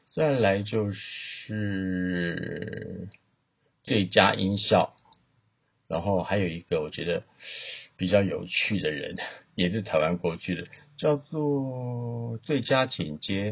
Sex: male